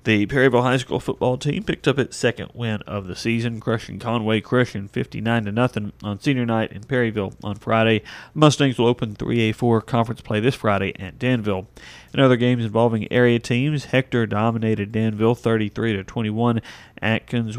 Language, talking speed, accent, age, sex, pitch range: English, 170 wpm, American, 40-59, male, 105-120 Hz